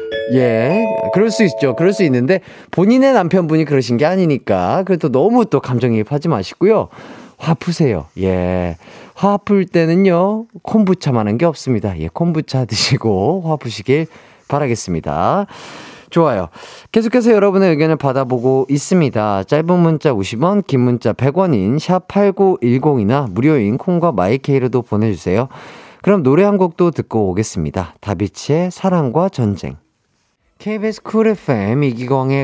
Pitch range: 115-180 Hz